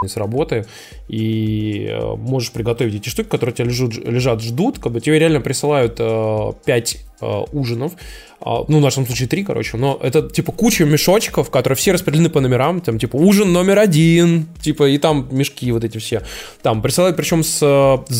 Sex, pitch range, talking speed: male, 120-160 Hz, 180 wpm